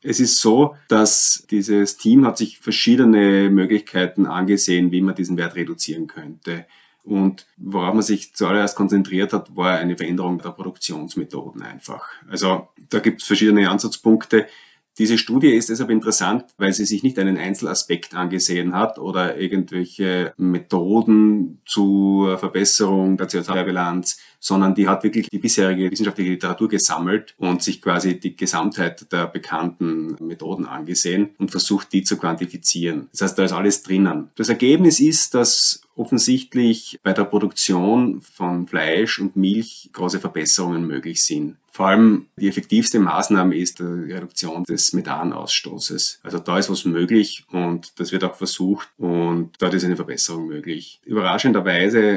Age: 30-49